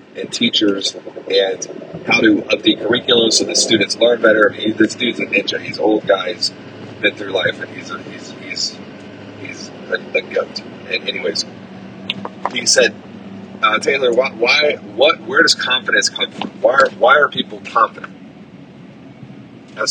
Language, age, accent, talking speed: English, 40-59, American, 165 wpm